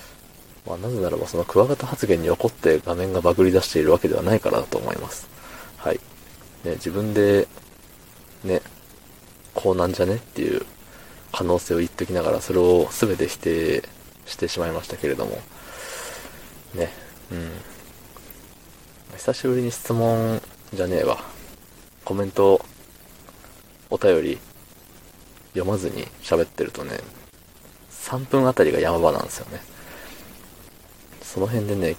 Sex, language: male, Japanese